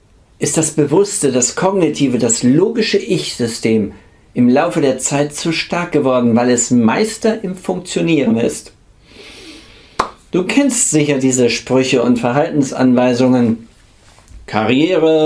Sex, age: male, 60-79